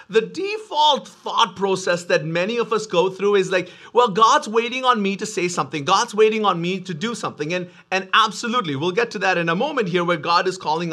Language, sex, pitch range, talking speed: English, male, 180-235 Hz, 230 wpm